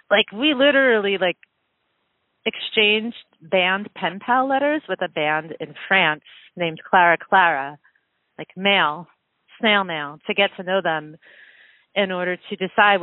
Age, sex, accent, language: 30-49, female, American, English